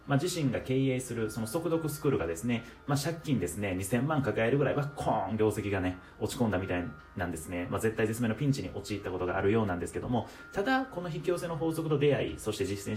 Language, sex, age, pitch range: Japanese, male, 30-49, 100-155 Hz